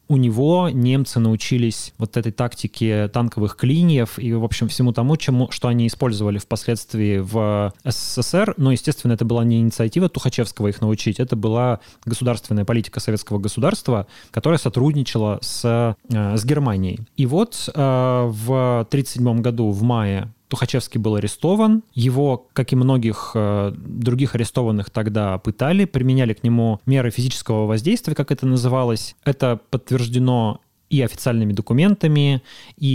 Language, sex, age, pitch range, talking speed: Russian, male, 20-39, 115-130 Hz, 135 wpm